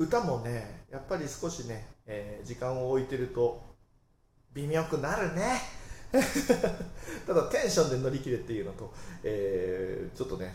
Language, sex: Japanese, male